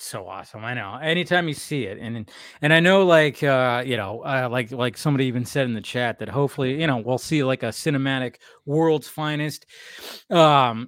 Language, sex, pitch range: English, male, 125-175 Hz